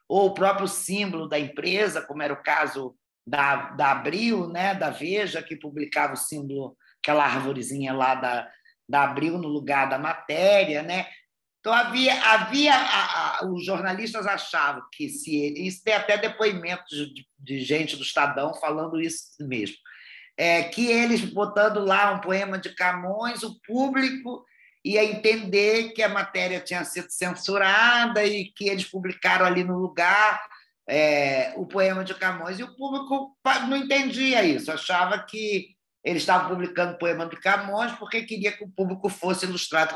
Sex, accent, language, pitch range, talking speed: male, Brazilian, Portuguese, 170-225 Hz, 160 wpm